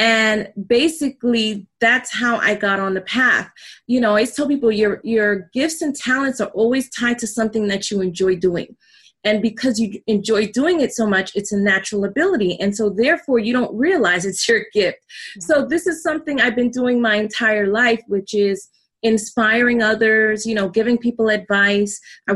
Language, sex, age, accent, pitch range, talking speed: English, female, 30-49, American, 205-255 Hz, 190 wpm